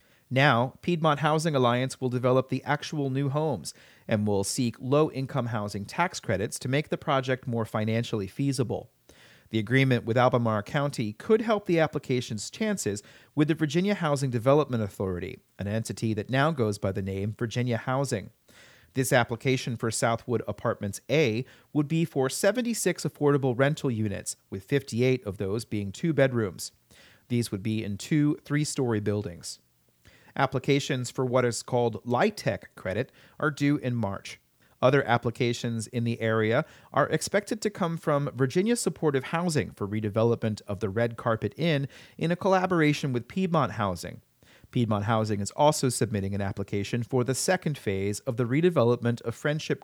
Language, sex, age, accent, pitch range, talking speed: English, male, 40-59, American, 110-145 Hz, 155 wpm